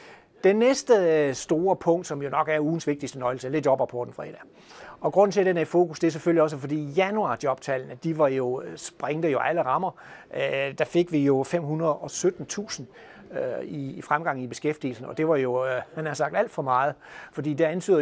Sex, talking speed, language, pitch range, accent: male, 200 wpm, Danish, 135-170 Hz, native